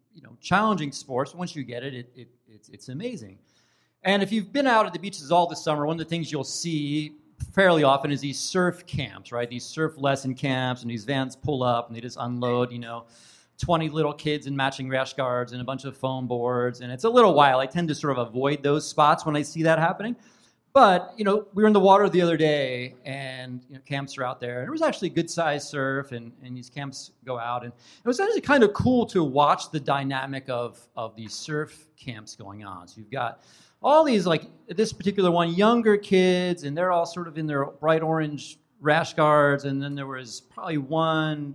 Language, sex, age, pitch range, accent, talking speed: English, male, 30-49, 135-200 Hz, American, 230 wpm